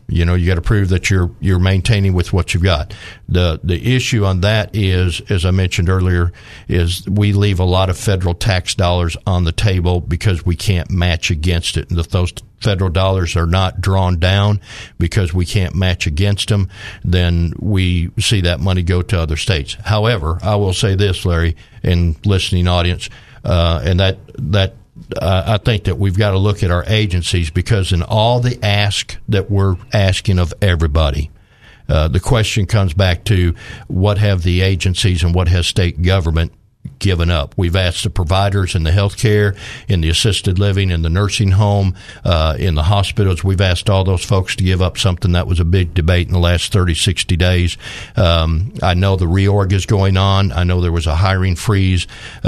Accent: American